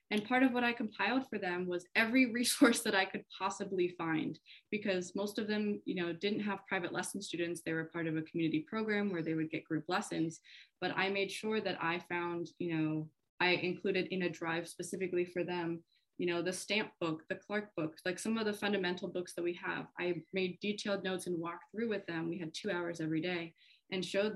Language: English